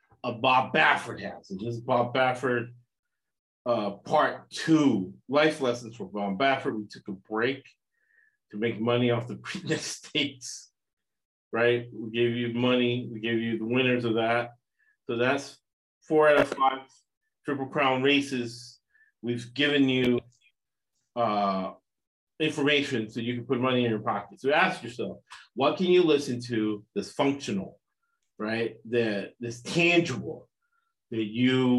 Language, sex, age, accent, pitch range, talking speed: English, male, 40-59, American, 115-140 Hz, 145 wpm